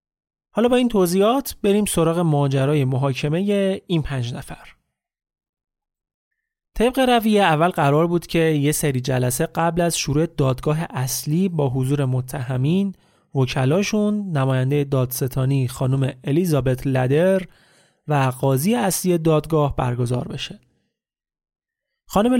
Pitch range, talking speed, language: 135-185 Hz, 115 wpm, Persian